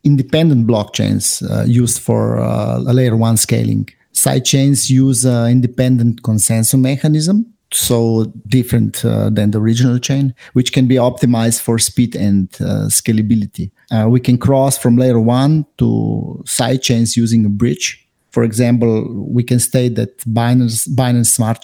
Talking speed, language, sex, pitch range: 155 wpm, English, male, 110-125 Hz